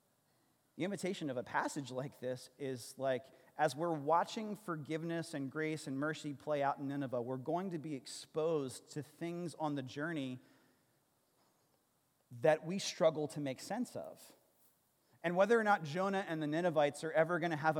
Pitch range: 140-170 Hz